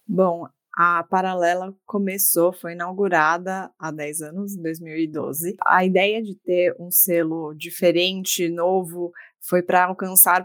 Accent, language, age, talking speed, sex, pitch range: Brazilian, Portuguese, 20-39, 120 wpm, female, 170-200 Hz